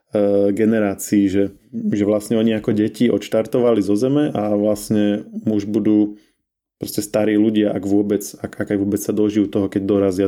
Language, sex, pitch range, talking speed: Slovak, male, 100-110 Hz, 160 wpm